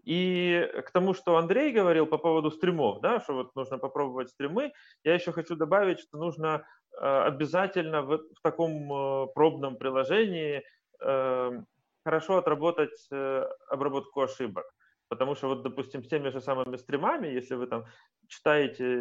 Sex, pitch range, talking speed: male, 125-160 Hz, 140 wpm